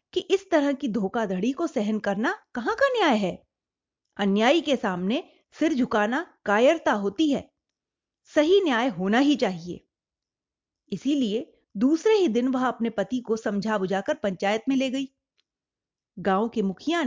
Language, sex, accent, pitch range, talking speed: Hindi, female, native, 210-305 Hz, 150 wpm